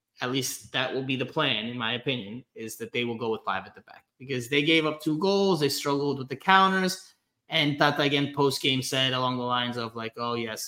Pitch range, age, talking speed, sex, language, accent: 120-145 Hz, 20-39, 245 wpm, male, English, American